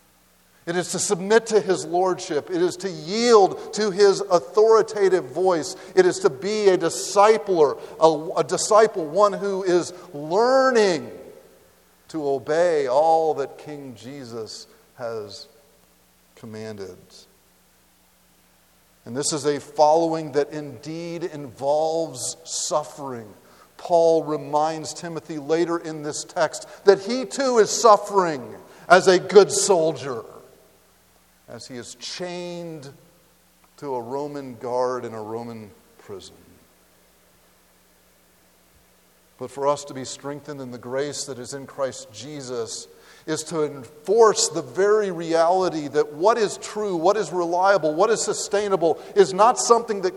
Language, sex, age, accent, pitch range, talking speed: English, male, 50-69, American, 130-200 Hz, 130 wpm